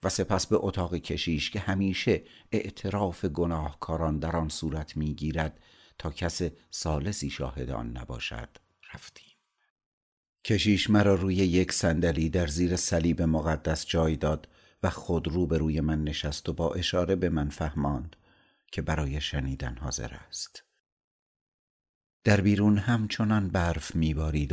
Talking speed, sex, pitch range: 125 wpm, male, 75-90 Hz